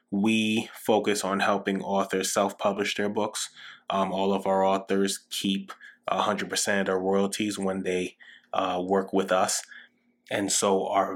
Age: 20-39